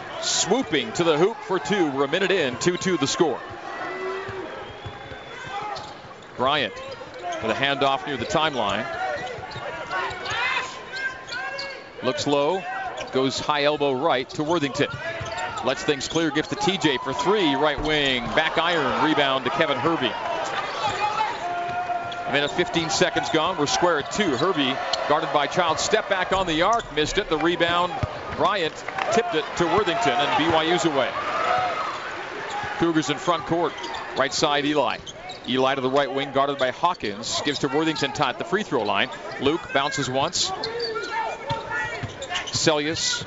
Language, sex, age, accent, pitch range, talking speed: English, male, 40-59, American, 145-190 Hz, 140 wpm